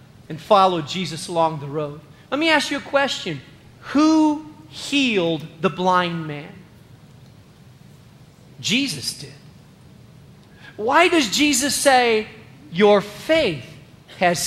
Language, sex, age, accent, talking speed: English, male, 40-59, American, 110 wpm